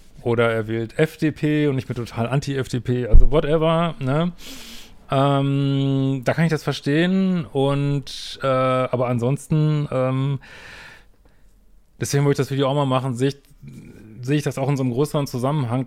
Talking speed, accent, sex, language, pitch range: 160 wpm, German, male, German, 115-135 Hz